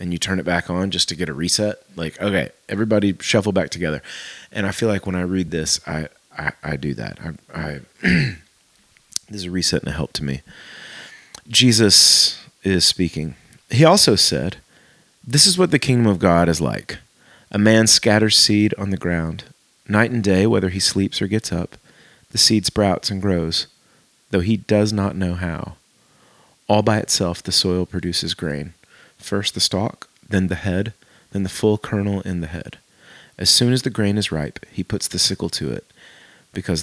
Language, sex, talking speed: English, male, 190 wpm